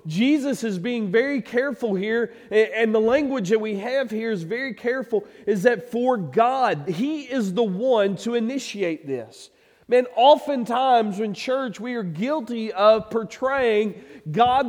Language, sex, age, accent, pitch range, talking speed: English, male, 40-59, American, 210-255 Hz, 150 wpm